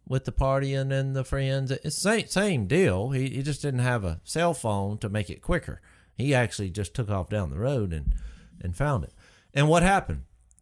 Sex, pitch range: male, 95-135 Hz